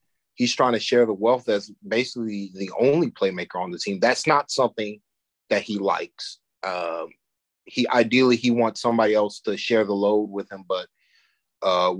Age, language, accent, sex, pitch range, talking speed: 30-49, English, American, male, 105-130 Hz, 175 wpm